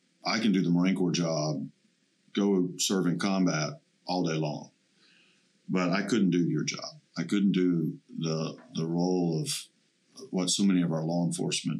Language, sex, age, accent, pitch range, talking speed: English, male, 50-69, American, 85-100 Hz, 175 wpm